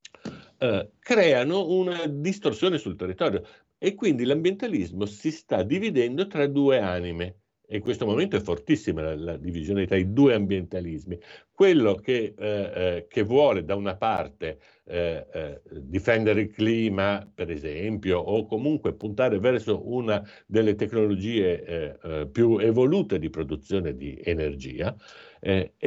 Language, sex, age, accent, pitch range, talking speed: Italian, male, 60-79, native, 95-150 Hz, 135 wpm